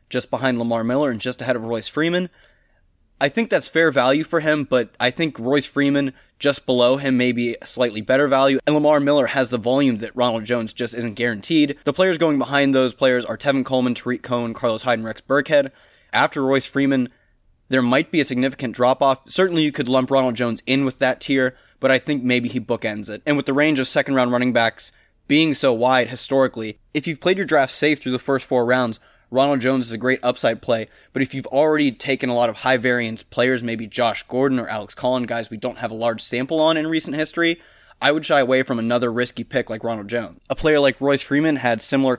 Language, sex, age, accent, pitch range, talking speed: English, male, 20-39, American, 120-140 Hz, 230 wpm